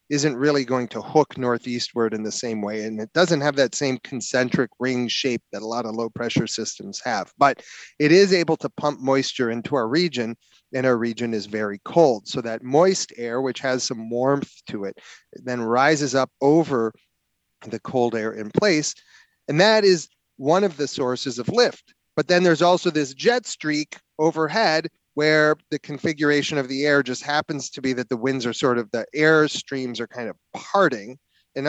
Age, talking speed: 30-49, 195 wpm